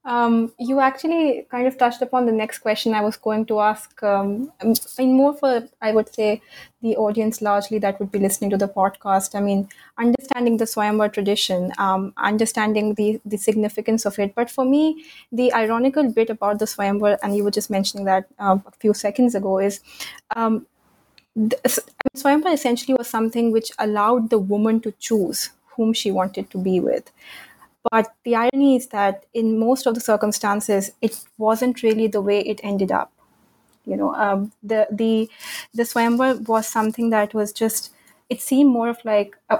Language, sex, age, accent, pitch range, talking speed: English, female, 20-39, Indian, 205-245 Hz, 180 wpm